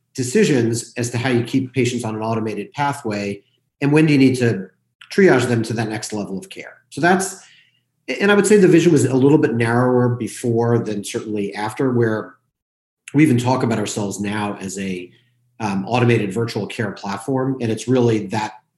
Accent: American